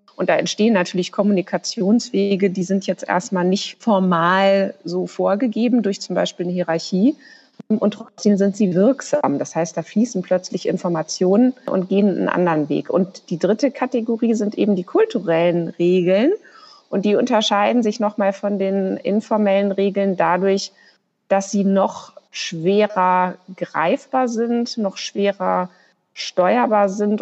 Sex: female